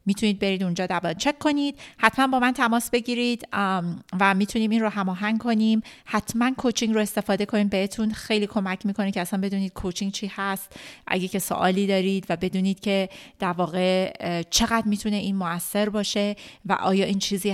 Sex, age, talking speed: female, 30-49, 170 wpm